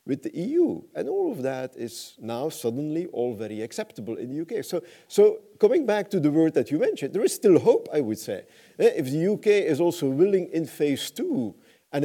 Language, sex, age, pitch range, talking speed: English, male, 50-69, 115-165 Hz, 215 wpm